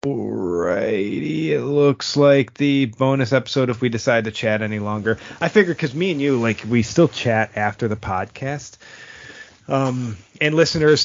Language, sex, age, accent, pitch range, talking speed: English, male, 30-49, American, 105-130 Hz, 165 wpm